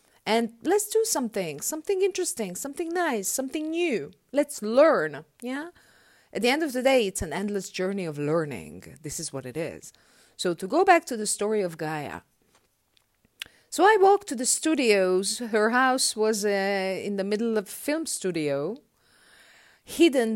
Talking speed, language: 170 wpm, English